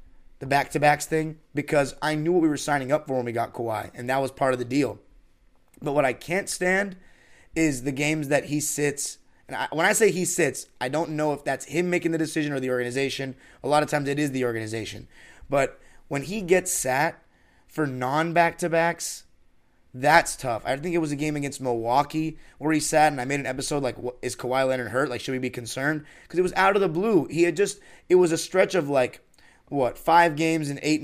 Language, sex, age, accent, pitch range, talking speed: English, male, 30-49, American, 125-165 Hz, 235 wpm